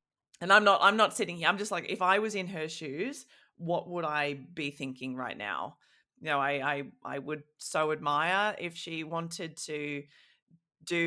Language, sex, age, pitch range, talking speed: English, female, 20-39, 140-165 Hz, 195 wpm